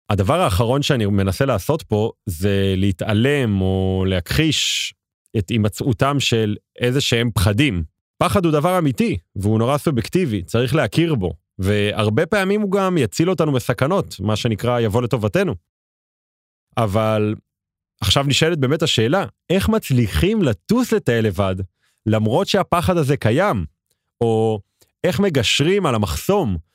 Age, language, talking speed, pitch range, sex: 30-49, Hebrew, 120 wpm, 105-160 Hz, male